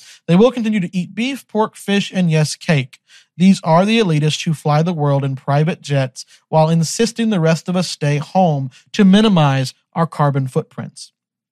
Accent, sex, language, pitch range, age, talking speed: American, male, English, 140-180 Hz, 40-59, 180 wpm